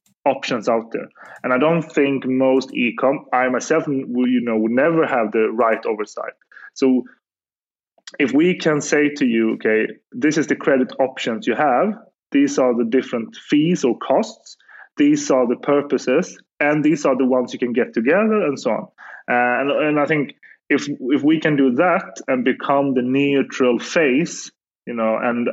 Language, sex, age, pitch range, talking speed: English, male, 30-49, 115-150 Hz, 175 wpm